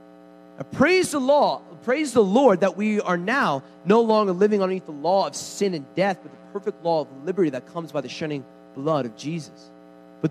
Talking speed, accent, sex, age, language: 190 wpm, American, male, 40-59, English